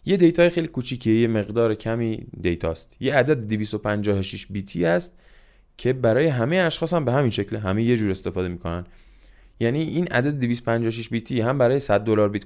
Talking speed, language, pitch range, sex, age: 170 wpm, Persian, 95-135 Hz, male, 20-39